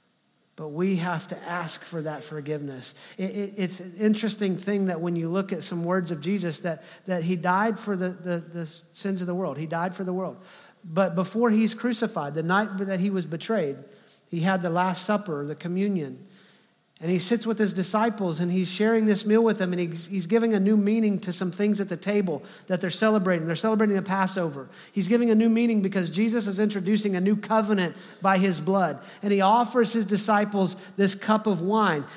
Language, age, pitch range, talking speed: English, 40-59, 170-210 Hz, 205 wpm